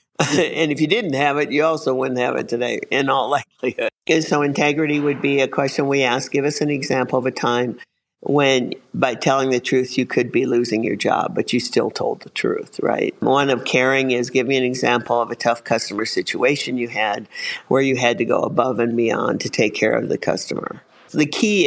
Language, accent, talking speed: English, American, 220 wpm